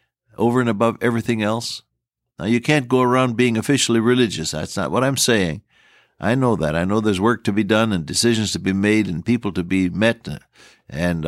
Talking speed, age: 205 wpm, 60-79